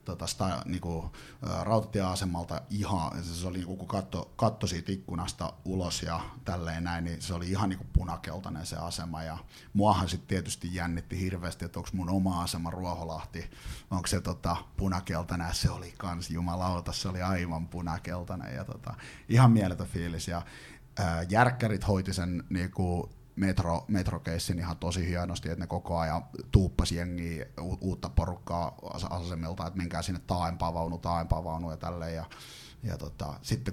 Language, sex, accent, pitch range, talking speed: Finnish, male, native, 85-95 Hz, 140 wpm